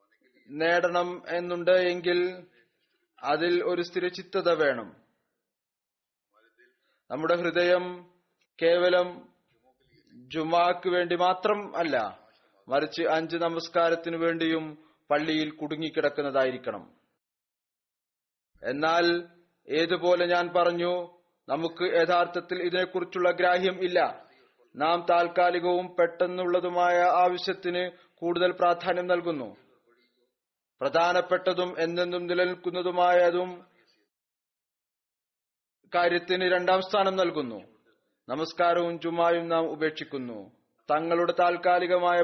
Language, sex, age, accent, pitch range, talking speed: Malayalam, male, 30-49, native, 165-180 Hz, 70 wpm